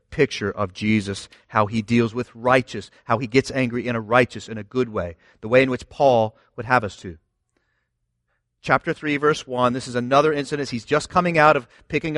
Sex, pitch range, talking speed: male, 110-150 Hz, 205 wpm